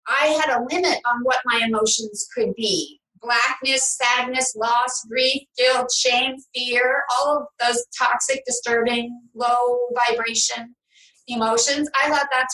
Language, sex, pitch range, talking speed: English, female, 245-305 Hz, 135 wpm